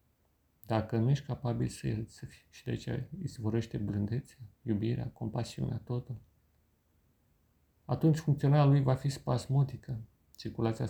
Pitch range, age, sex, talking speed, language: 80-130 Hz, 40-59, male, 120 wpm, Romanian